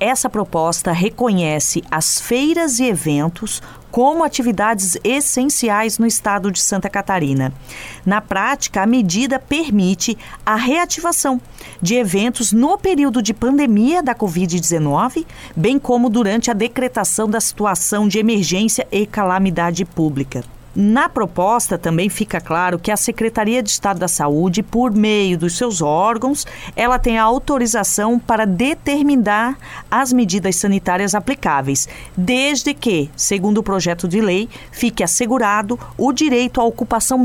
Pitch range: 190-250 Hz